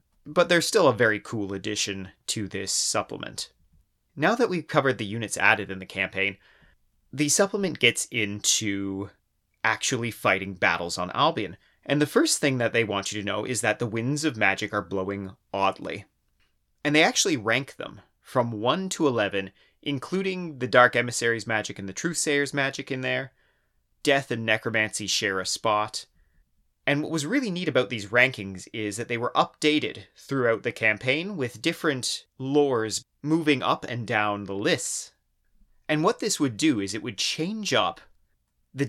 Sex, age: male, 30-49